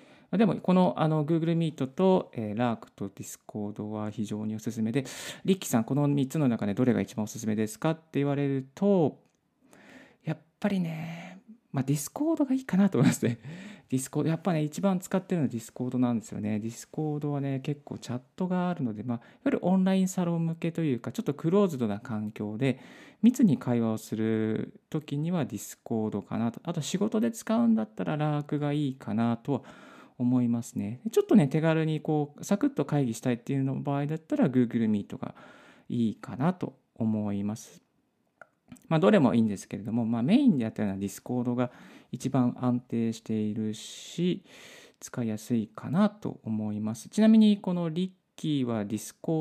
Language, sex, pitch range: Japanese, male, 115-180 Hz